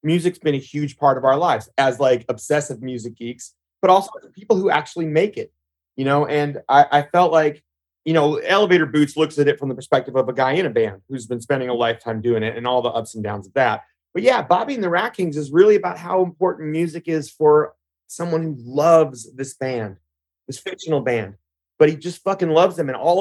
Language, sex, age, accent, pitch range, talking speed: English, male, 30-49, American, 125-165 Hz, 230 wpm